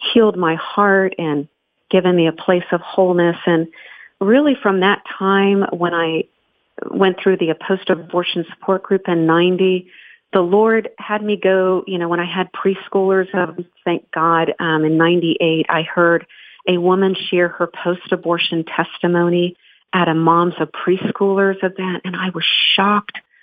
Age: 40-59